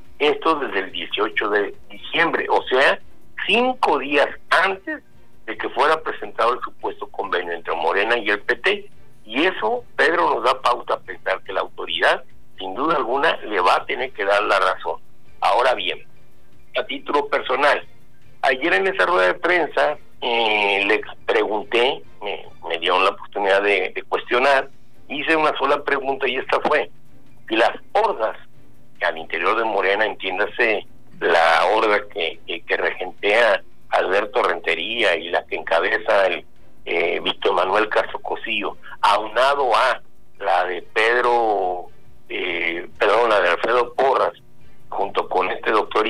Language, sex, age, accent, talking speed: Spanish, male, 60-79, Mexican, 150 wpm